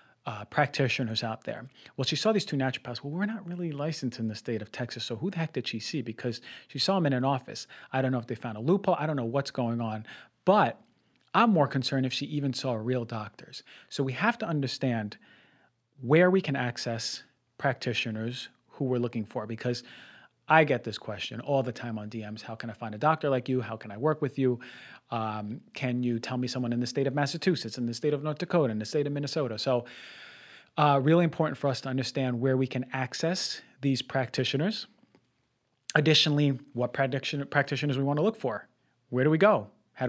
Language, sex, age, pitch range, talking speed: English, male, 30-49, 115-140 Hz, 215 wpm